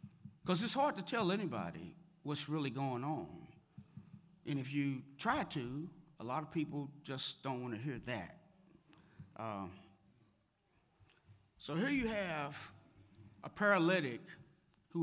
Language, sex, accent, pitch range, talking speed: English, male, American, 145-190 Hz, 130 wpm